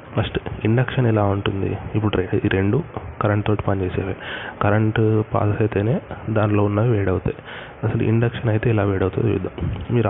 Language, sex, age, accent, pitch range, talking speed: Telugu, male, 20-39, native, 100-115 Hz, 125 wpm